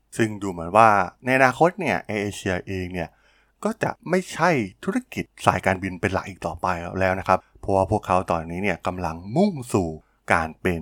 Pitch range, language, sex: 90-115 Hz, Thai, male